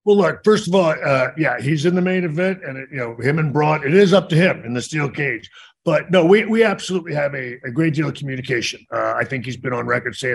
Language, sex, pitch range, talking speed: English, male, 125-165 Hz, 280 wpm